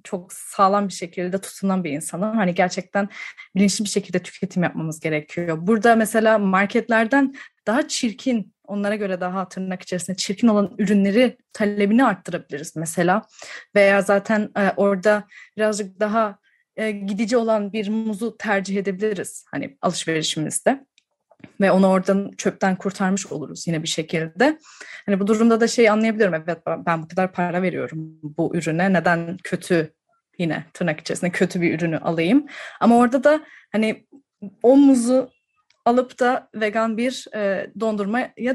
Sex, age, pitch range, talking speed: female, 30-49, 185-225 Hz, 135 wpm